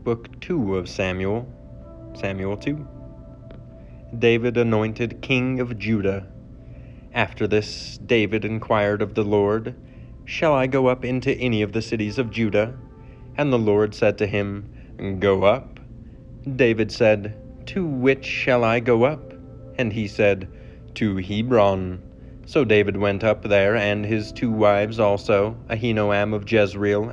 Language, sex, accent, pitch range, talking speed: English, male, American, 100-120 Hz, 140 wpm